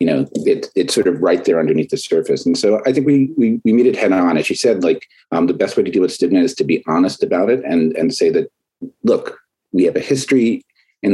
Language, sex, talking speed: English, male, 270 wpm